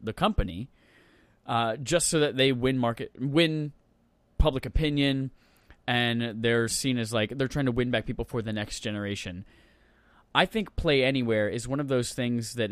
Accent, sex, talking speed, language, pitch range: American, male, 175 wpm, English, 110-140 Hz